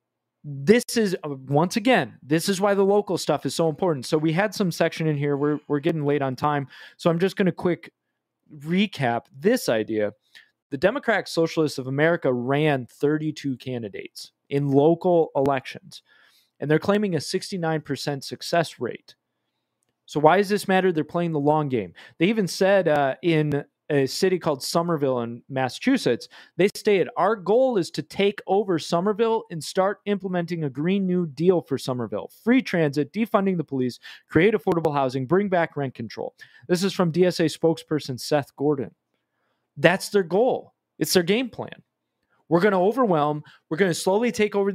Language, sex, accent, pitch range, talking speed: English, male, American, 140-190 Hz, 170 wpm